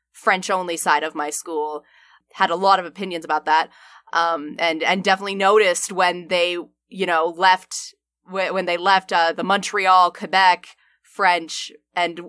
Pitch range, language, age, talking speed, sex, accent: 170-200 Hz, English, 20-39, 160 wpm, female, American